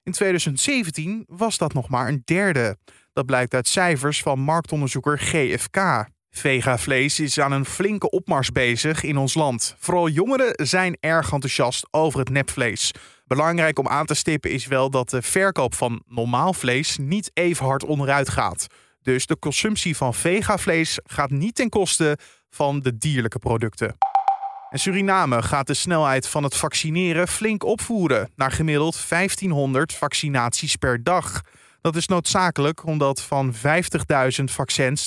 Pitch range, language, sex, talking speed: 135-175 Hz, Dutch, male, 150 wpm